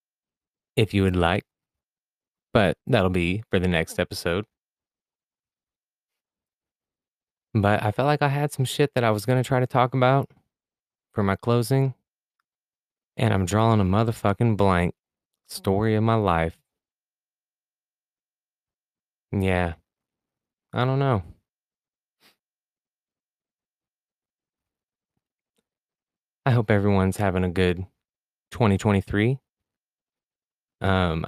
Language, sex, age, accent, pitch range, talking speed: English, male, 20-39, American, 95-125 Hz, 100 wpm